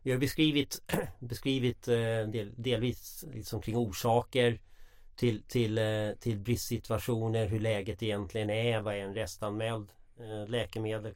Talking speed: 115 wpm